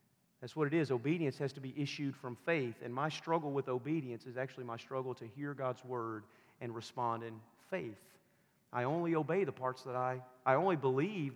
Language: English